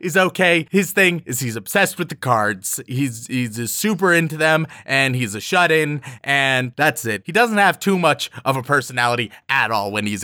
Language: English